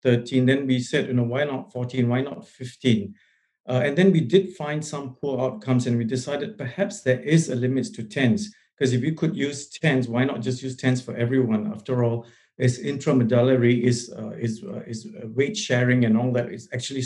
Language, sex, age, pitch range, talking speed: English, male, 50-69, 120-145 Hz, 200 wpm